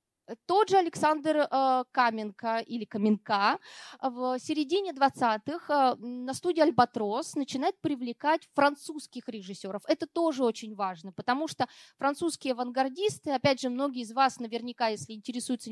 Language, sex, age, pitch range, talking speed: Russian, female, 20-39, 240-300 Hz, 120 wpm